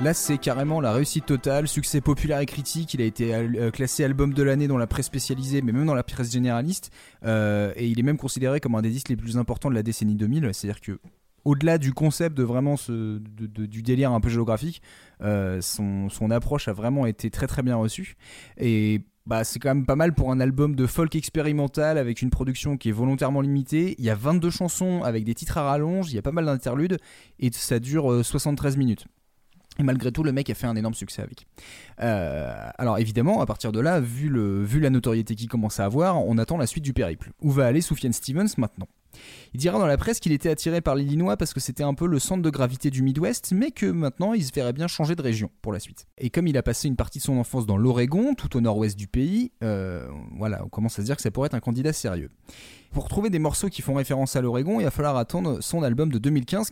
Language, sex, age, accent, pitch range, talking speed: French, male, 20-39, French, 115-150 Hz, 245 wpm